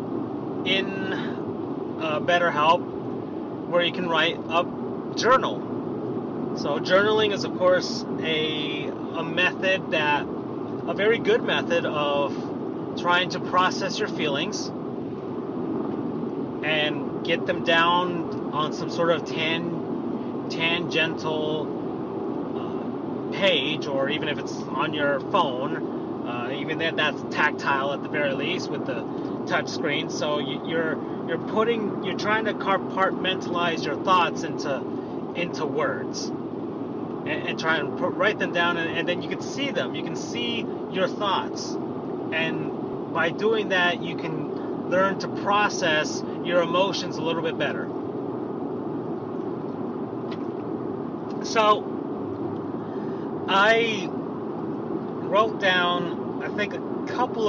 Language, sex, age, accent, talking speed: English, male, 30-49, American, 125 wpm